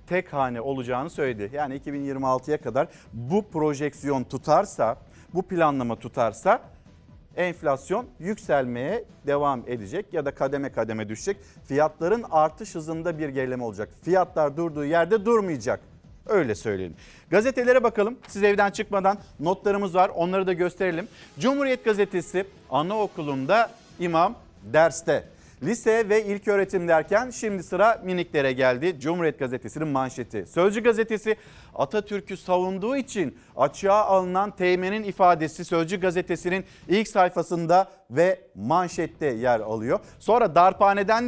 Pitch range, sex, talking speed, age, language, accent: 150-200 Hz, male, 115 wpm, 50-69, Turkish, native